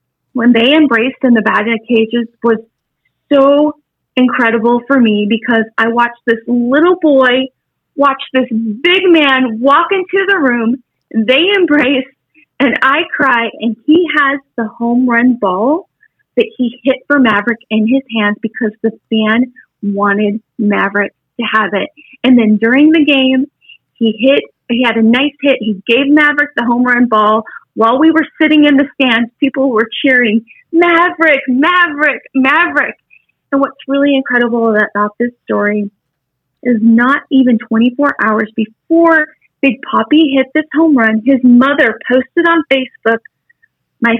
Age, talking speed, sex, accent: 30-49, 150 wpm, female, American